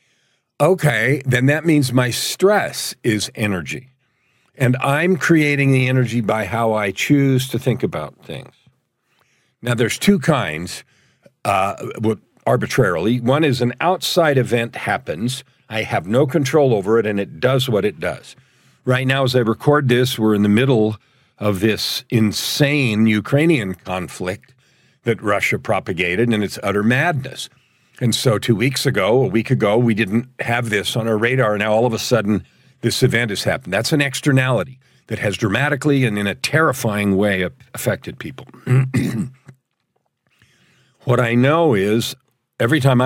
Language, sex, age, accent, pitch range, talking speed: English, male, 50-69, American, 105-135 Hz, 155 wpm